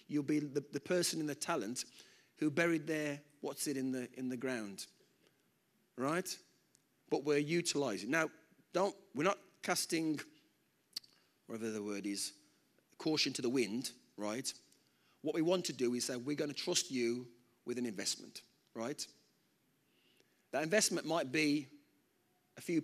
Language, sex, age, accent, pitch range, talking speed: English, male, 40-59, British, 135-170 Hz, 140 wpm